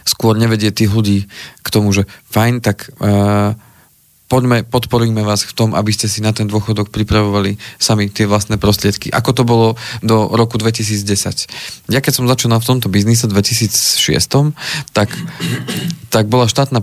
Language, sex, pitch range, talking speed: Slovak, male, 105-120 Hz, 155 wpm